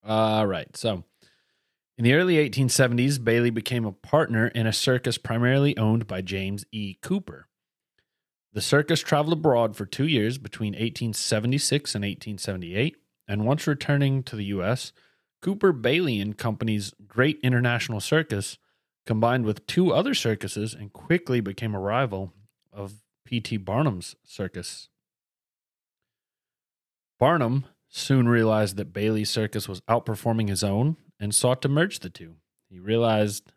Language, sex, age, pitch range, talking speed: English, male, 30-49, 100-135 Hz, 140 wpm